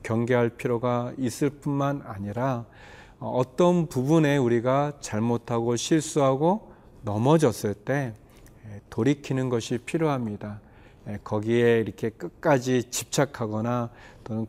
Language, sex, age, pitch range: Korean, male, 40-59, 110-135 Hz